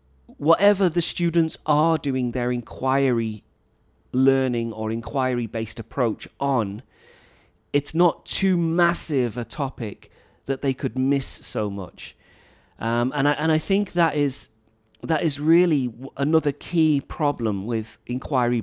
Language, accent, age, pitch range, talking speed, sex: English, British, 30-49, 110-150 Hz, 130 wpm, male